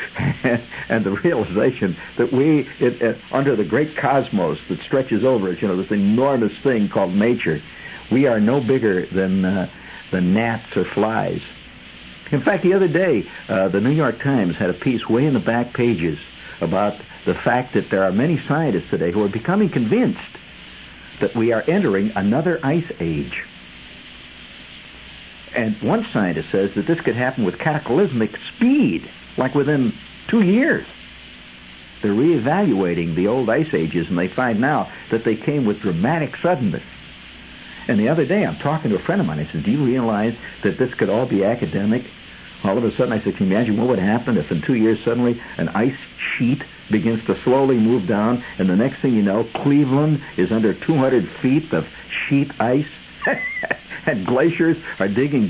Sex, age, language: male, 60-79, English